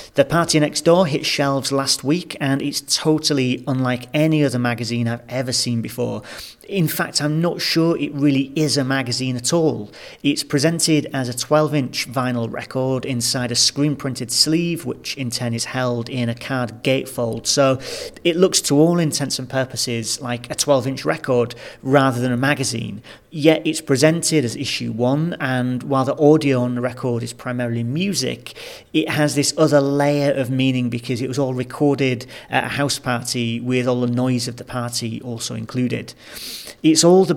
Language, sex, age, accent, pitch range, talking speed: English, male, 40-59, British, 125-150 Hz, 185 wpm